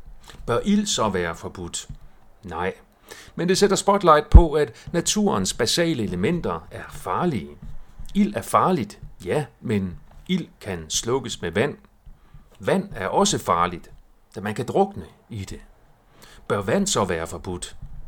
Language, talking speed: Danish, 140 wpm